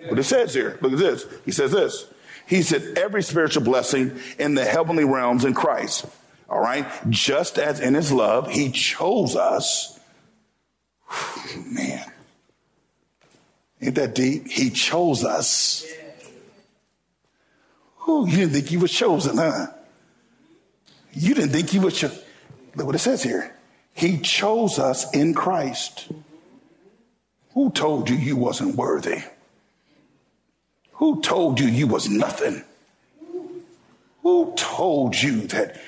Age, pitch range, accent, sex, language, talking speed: 50-69, 155-255 Hz, American, male, English, 130 wpm